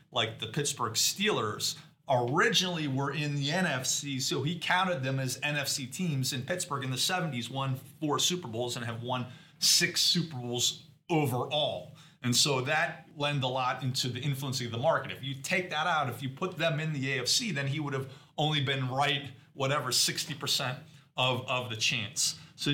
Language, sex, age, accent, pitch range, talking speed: English, male, 30-49, American, 125-150 Hz, 185 wpm